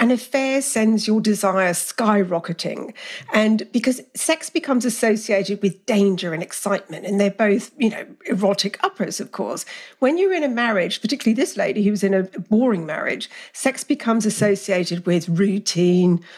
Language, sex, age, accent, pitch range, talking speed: English, female, 50-69, British, 195-245 Hz, 160 wpm